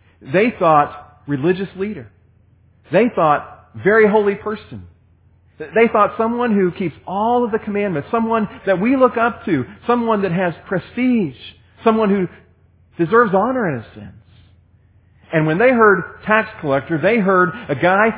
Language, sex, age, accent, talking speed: English, male, 40-59, American, 150 wpm